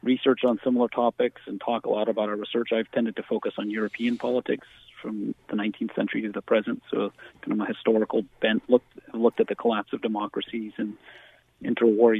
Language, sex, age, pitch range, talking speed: English, male, 40-59, 110-130 Hz, 195 wpm